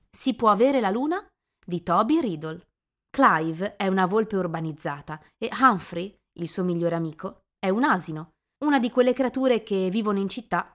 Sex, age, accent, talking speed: female, 20-39, native, 165 wpm